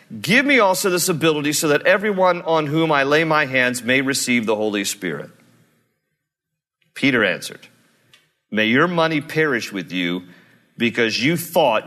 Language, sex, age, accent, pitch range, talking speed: English, male, 40-59, American, 130-170 Hz, 150 wpm